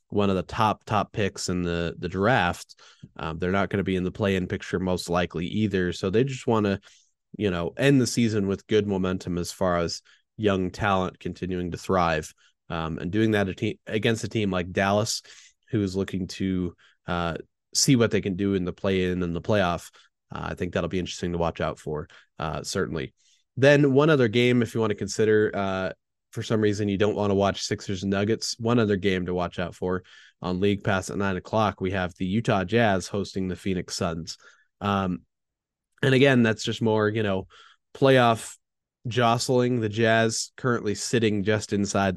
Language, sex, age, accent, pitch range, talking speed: English, male, 20-39, American, 90-110 Hz, 205 wpm